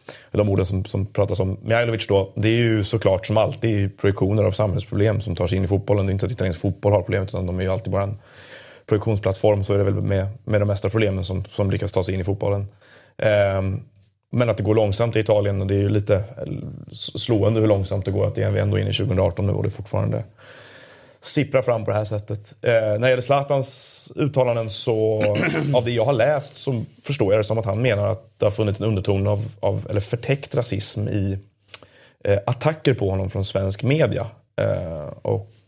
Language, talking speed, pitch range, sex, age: Swedish, 225 wpm, 100-120 Hz, male, 30-49